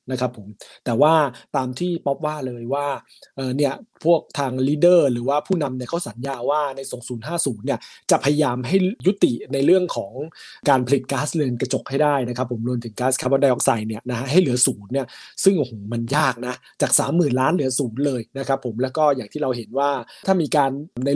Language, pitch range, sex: Thai, 125-155 Hz, male